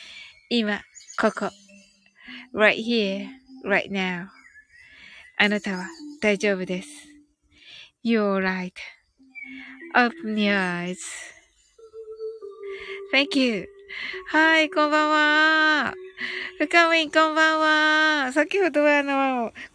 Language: Japanese